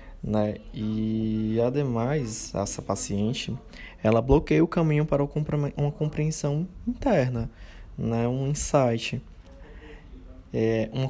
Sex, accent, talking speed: male, Brazilian, 85 wpm